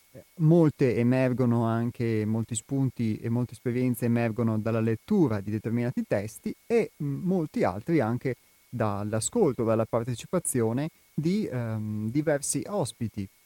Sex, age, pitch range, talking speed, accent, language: male, 30-49, 115-145 Hz, 110 wpm, native, Italian